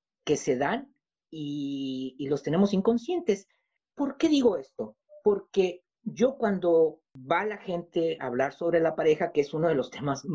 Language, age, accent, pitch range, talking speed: Spanish, 40-59, Mexican, 165-235 Hz, 170 wpm